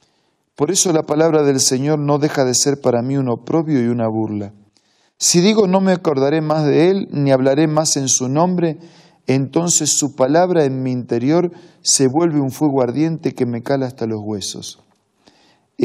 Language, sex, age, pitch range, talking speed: Spanish, male, 40-59, 125-160 Hz, 185 wpm